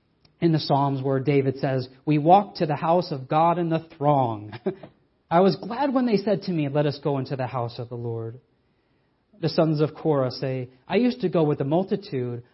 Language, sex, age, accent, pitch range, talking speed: English, male, 40-59, American, 125-155 Hz, 215 wpm